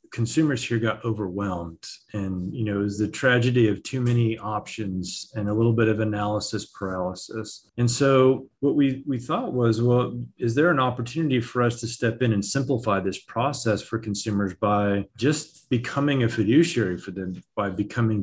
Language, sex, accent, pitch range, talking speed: English, male, American, 105-120 Hz, 180 wpm